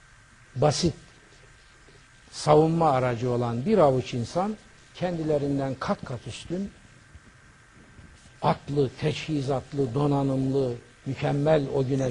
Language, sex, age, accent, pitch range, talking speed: Turkish, male, 60-79, native, 120-155 Hz, 85 wpm